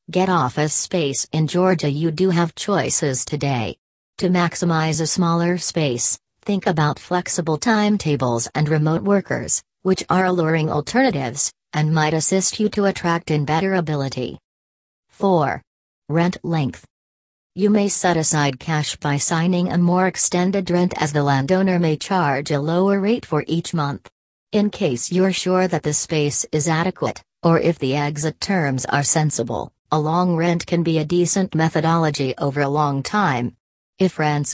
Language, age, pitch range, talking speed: English, 40-59, 145-180 Hz, 155 wpm